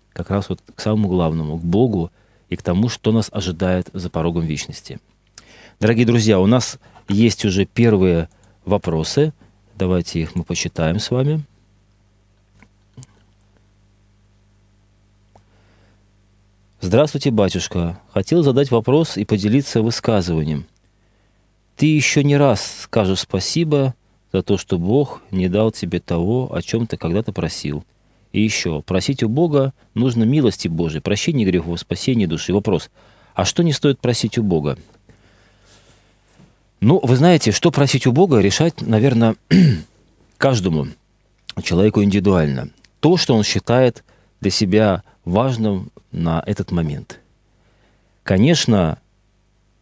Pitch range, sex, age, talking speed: 95-115 Hz, male, 30-49, 120 wpm